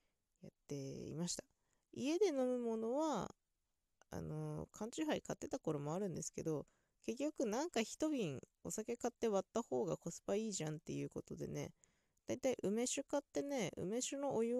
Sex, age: female, 20-39